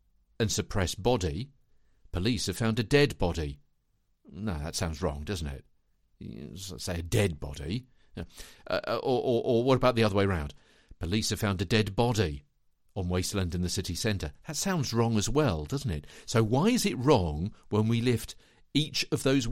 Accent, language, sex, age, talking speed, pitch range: British, English, male, 50-69, 180 wpm, 90-125 Hz